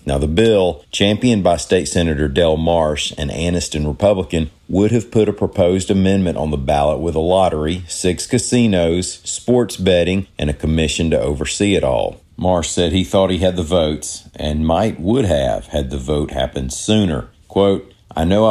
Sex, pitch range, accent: male, 75-95 Hz, American